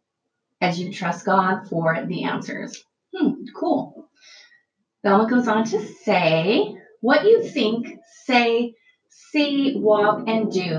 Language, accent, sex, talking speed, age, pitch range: English, American, female, 120 wpm, 30-49, 190-270 Hz